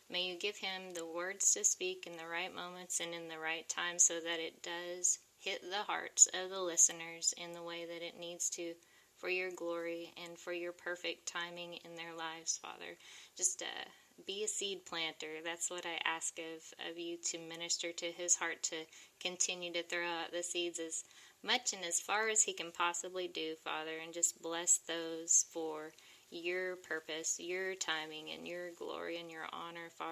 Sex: female